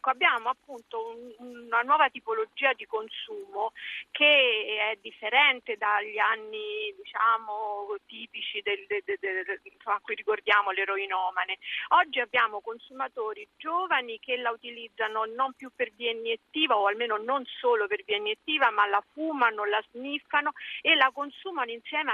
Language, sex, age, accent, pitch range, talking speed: Italian, female, 50-69, native, 215-335 Hz, 120 wpm